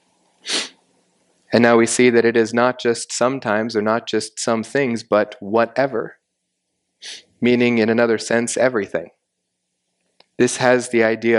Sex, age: male, 30-49